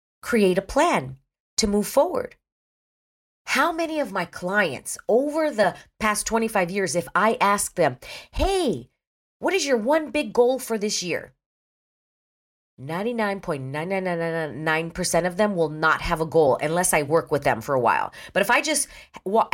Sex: female